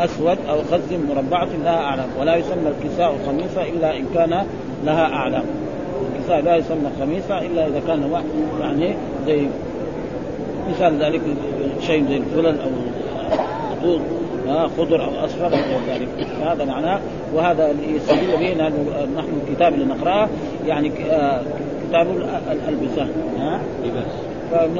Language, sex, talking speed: Arabic, male, 120 wpm